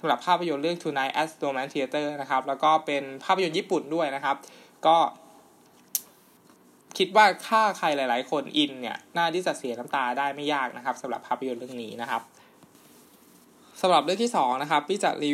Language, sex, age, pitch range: Thai, male, 20-39, 135-170 Hz